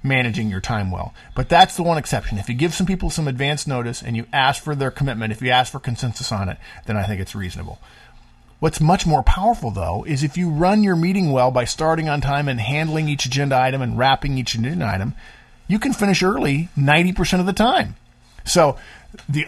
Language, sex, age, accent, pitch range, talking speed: English, male, 50-69, American, 110-150 Hz, 220 wpm